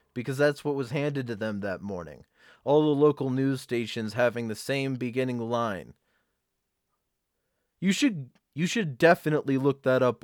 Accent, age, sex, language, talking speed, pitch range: American, 30-49, male, English, 160 wpm, 110-140 Hz